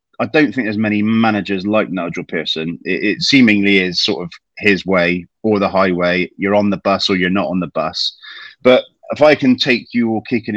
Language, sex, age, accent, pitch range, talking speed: English, male, 30-49, British, 95-120 Hz, 215 wpm